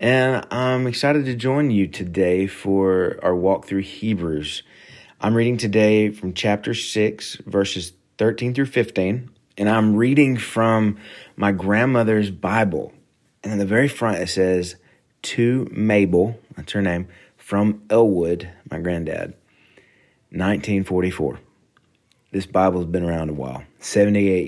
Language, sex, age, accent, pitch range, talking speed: English, male, 30-49, American, 90-115 Hz, 130 wpm